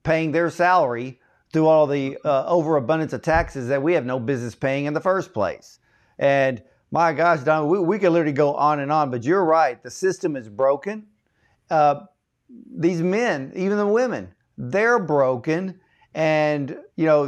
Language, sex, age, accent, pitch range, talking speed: English, male, 50-69, American, 135-180 Hz, 175 wpm